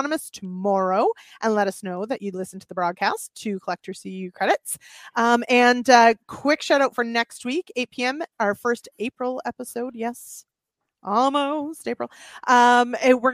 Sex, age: female, 30-49